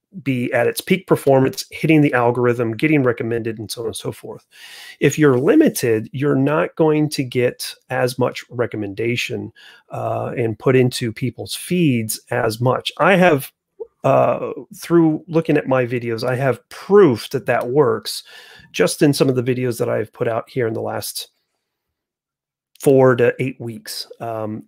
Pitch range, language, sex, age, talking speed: 115-150 Hz, English, male, 30-49, 165 wpm